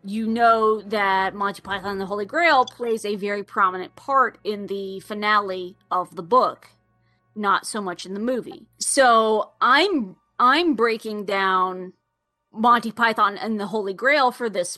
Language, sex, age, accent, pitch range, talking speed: English, female, 20-39, American, 200-260 Hz, 160 wpm